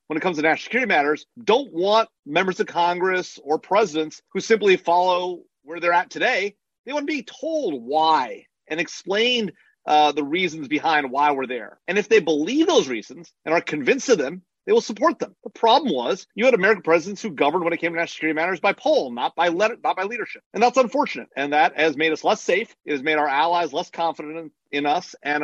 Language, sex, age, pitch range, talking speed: English, male, 40-59, 150-220 Hz, 220 wpm